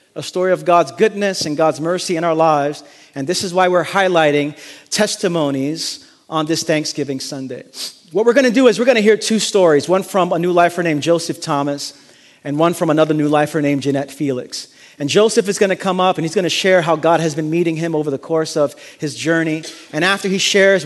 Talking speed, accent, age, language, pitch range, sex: 225 wpm, American, 40-59, English, 150-185 Hz, male